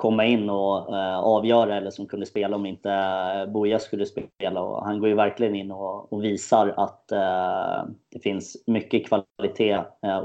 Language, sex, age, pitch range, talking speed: English, male, 20-39, 95-110 Hz, 175 wpm